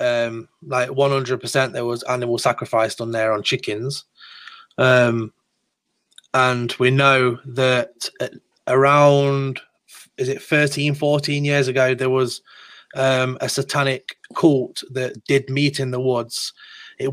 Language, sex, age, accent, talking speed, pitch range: English, male, 30-49, British, 125 wpm, 125-140 Hz